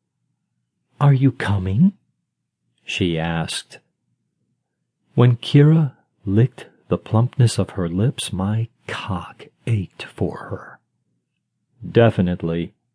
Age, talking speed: 40-59, 90 wpm